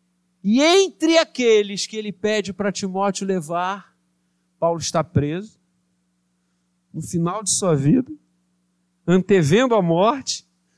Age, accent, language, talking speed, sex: 50-69, Brazilian, Portuguese, 110 wpm, male